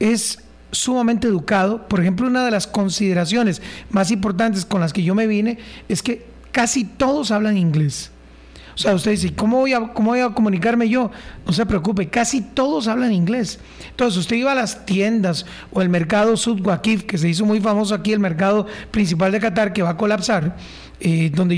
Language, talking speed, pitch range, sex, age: Spanish, 195 wpm, 190-230 Hz, male, 40-59